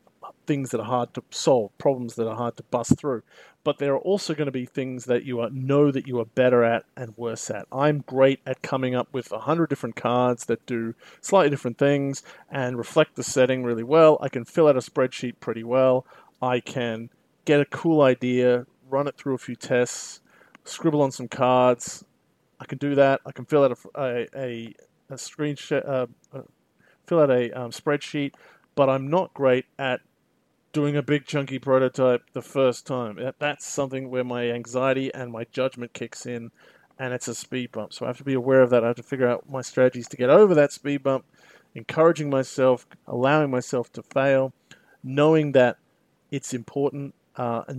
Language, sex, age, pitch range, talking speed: English, male, 40-59, 125-140 Hz, 200 wpm